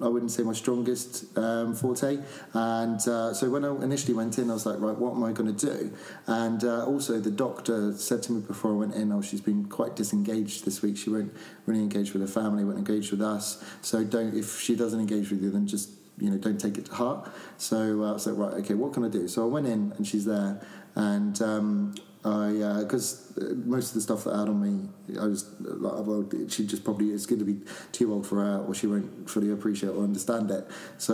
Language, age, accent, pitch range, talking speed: English, 30-49, British, 105-115 Hz, 250 wpm